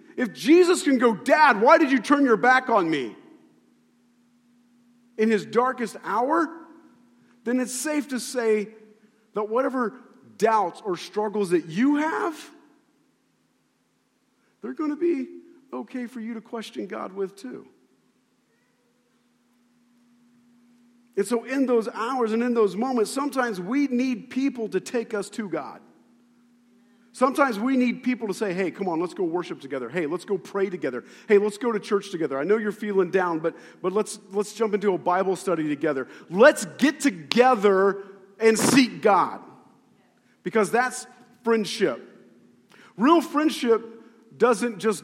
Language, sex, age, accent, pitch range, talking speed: English, male, 50-69, American, 205-250 Hz, 150 wpm